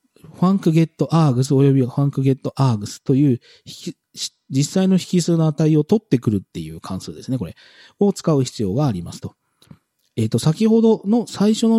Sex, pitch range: male, 120-195 Hz